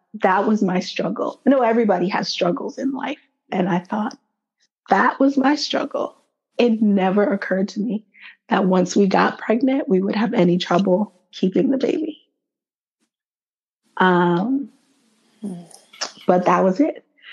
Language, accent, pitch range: English, American, 175-215 Hz